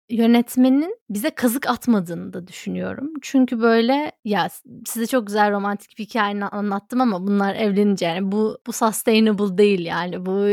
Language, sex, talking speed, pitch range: Turkish, female, 150 wpm, 195-245 Hz